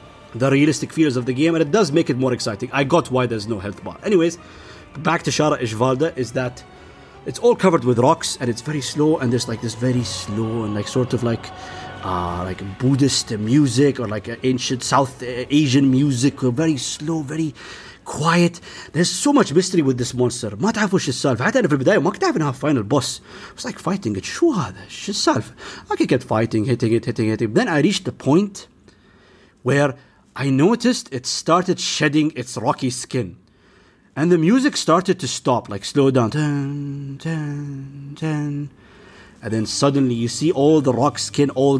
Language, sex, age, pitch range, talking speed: Arabic, male, 30-49, 120-160 Hz, 175 wpm